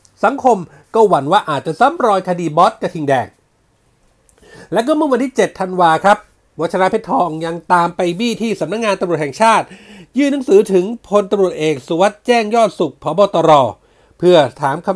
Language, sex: Thai, male